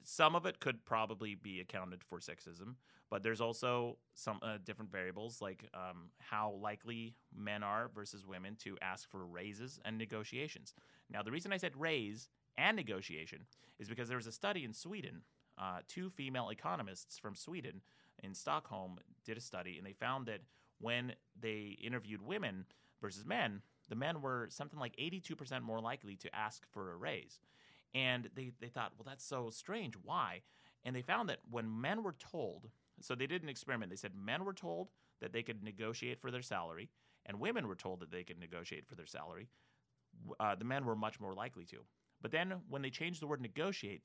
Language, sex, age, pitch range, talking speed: English, male, 30-49, 100-130 Hz, 195 wpm